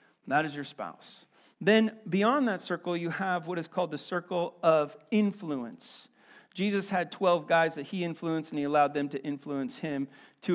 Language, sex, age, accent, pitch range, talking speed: English, male, 40-59, American, 155-200 Hz, 180 wpm